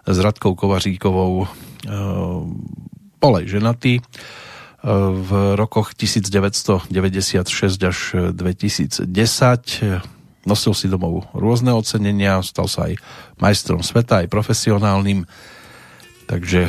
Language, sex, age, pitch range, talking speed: Slovak, male, 40-59, 95-115 Hz, 85 wpm